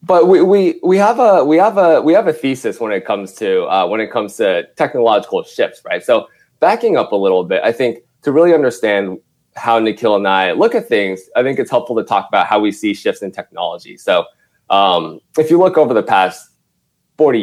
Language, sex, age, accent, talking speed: English, male, 20-39, American, 225 wpm